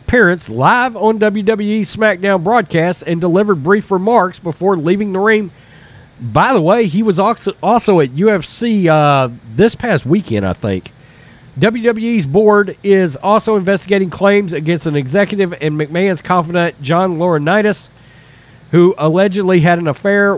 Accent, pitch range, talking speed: American, 145-210 Hz, 140 wpm